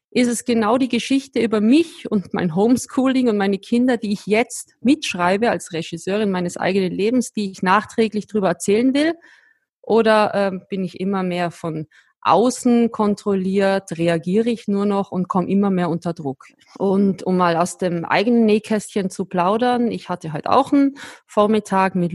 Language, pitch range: German, 180-230 Hz